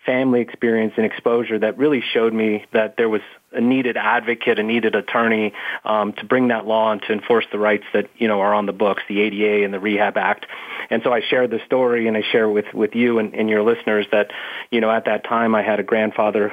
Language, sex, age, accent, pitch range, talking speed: English, male, 30-49, American, 110-120 Hz, 240 wpm